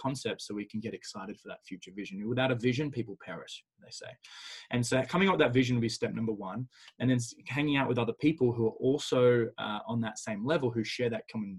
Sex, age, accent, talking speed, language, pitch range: male, 20-39, Australian, 250 wpm, English, 110-130 Hz